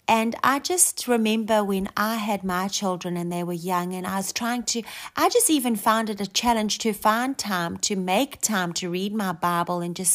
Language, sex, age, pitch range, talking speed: English, female, 30-49, 190-235 Hz, 220 wpm